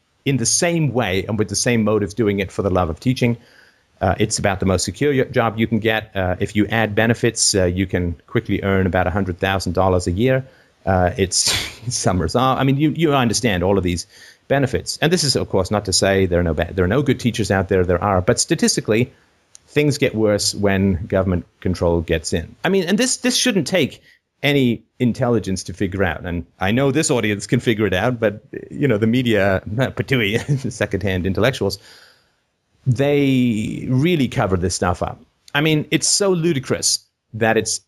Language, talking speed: English, 205 wpm